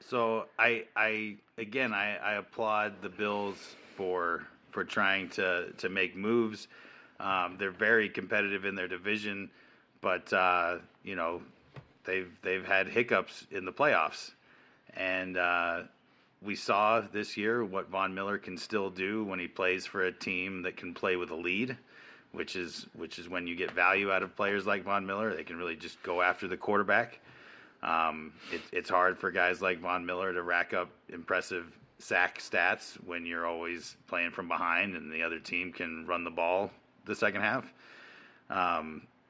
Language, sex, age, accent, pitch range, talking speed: English, male, 30-49, American, 90-105 Hz, 170 wpm